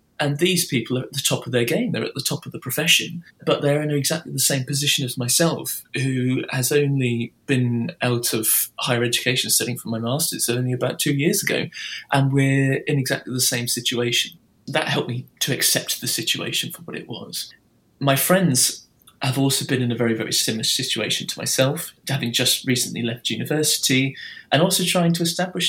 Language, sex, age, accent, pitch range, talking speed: English, male, 20-39, British, 125-150 Hz, 195 wpm